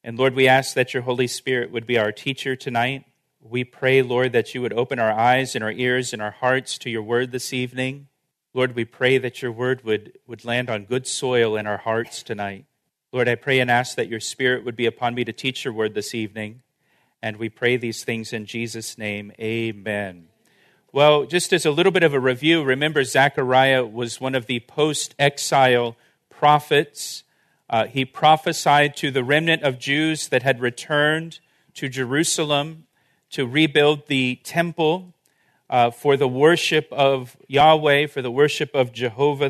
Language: English